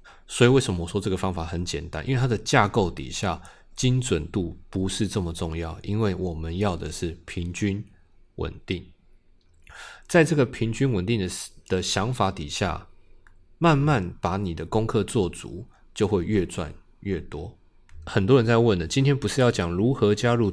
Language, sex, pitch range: Chinese, male, 85-110 Hz